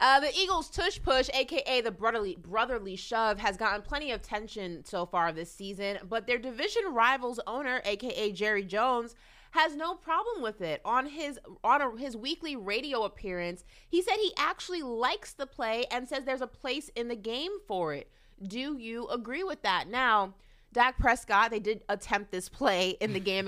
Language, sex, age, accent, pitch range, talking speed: English, female, 30-49, American, 185-260 Hz, 185 wpm